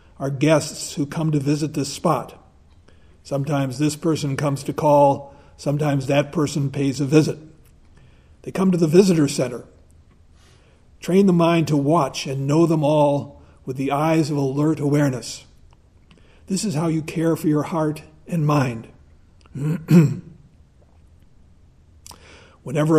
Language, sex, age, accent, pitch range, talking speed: English, male, 50-69, American, 125-165 Hz, 135 wpm